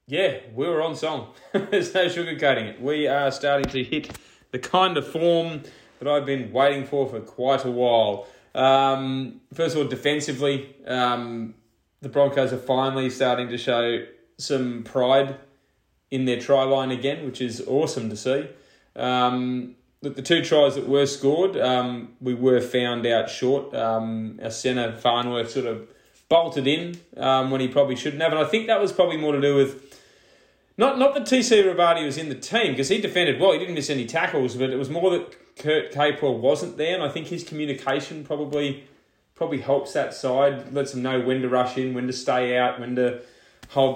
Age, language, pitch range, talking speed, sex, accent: 20-39, English, 125-150 Hz, 190 wpm, male, Australian